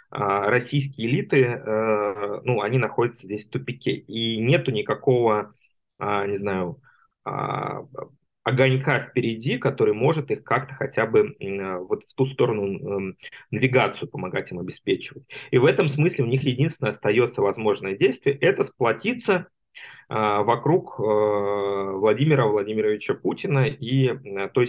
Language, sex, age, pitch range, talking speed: Russian, male, 20-39, 105-140 Hz, 115 wpm